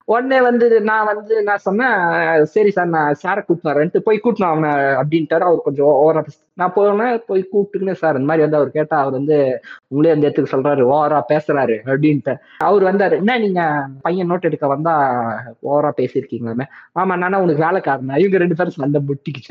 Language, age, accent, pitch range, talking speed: Tamil, 20-39, native, 140-190 Hz, 175 wpm